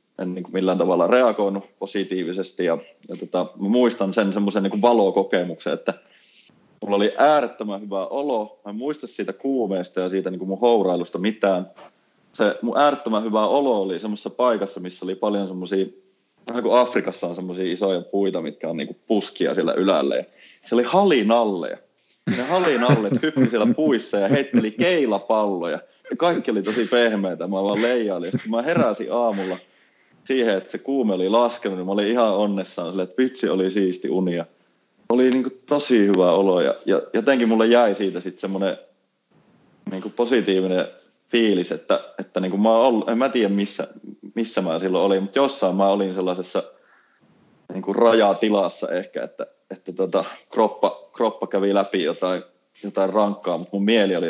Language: Finnish